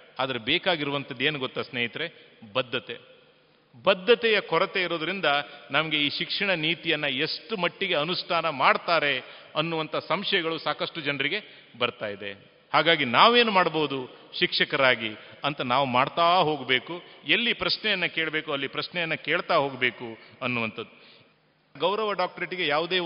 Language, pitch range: Kannada, 145-190 Hz